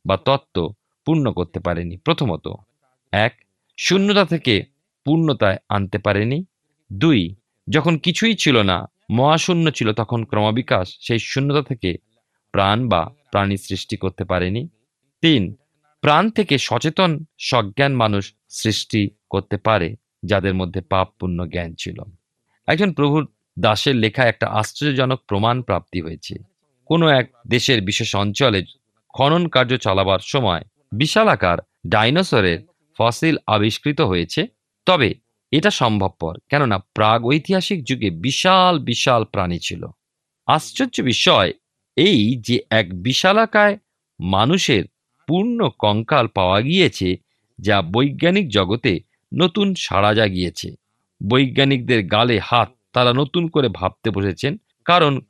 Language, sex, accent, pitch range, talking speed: Bengali, male, native, 100-150 Hz, 115 wpm